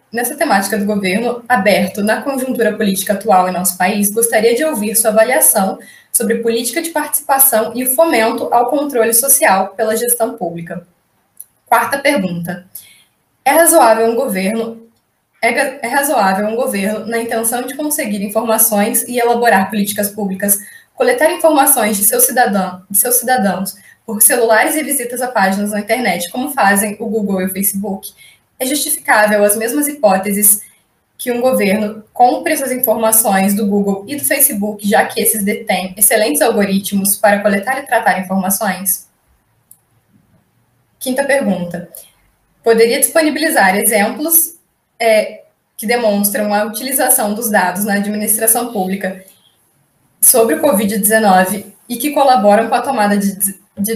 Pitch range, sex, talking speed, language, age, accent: 200-245 Hz, female, 135 wpm, Portuguese, 10-29, Brazilian